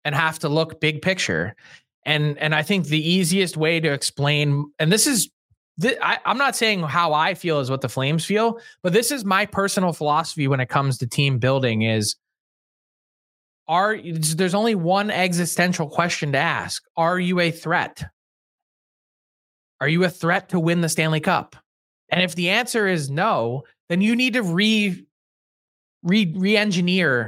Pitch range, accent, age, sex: 150-185 Hz, American, 20-39, male